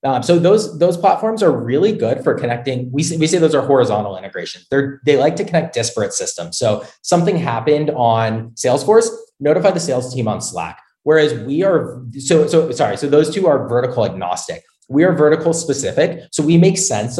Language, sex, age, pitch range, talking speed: English, male, 30-49, 115-170 Hz, 195 wpm